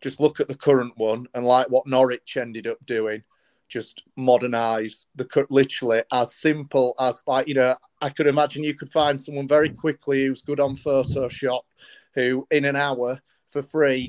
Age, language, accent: 30-49, English, British